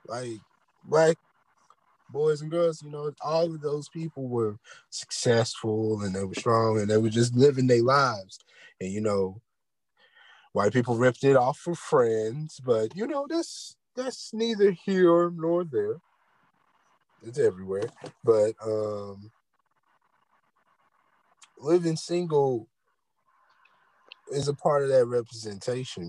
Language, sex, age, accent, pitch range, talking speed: English, male, 20-39, American, 110-150 Hz, 125 wpm